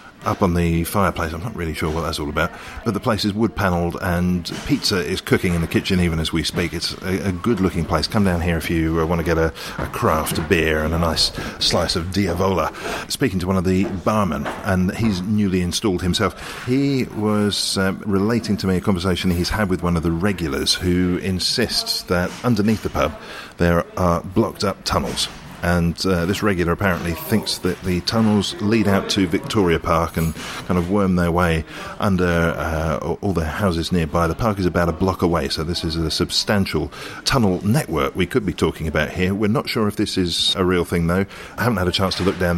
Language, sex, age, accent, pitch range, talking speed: English, male, 40-59, British, 85-100 Hz, 215 wpm